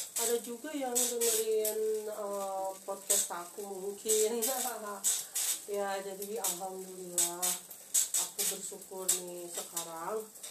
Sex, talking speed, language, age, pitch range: female, 80 wpm, Indonesian, 30-49, 180-205 Hz